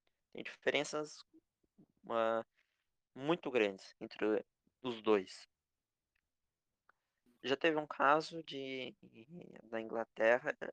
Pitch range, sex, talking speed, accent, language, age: 105-125 Hz, male, 85 wpm, Brazilian, Portuguese, 20-39